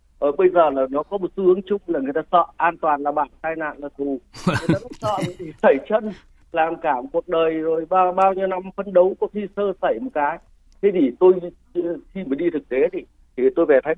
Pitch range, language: 145-225 Hz, Vietnamese